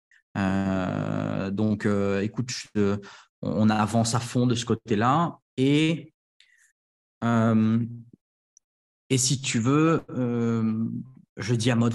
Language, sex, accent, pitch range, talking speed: French, male, French, 105-130 Hz, 120 wpm